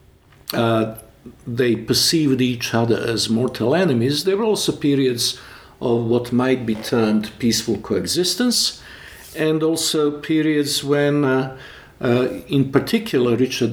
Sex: male